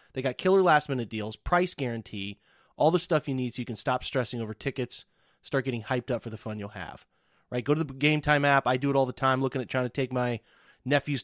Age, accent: 30-49, American